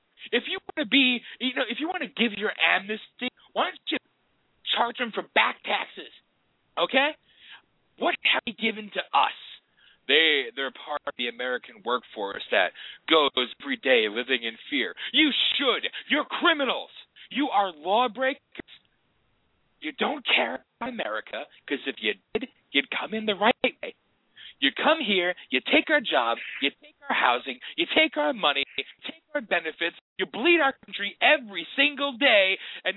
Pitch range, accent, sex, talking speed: 195-280 Hz, American, male, 165 wpm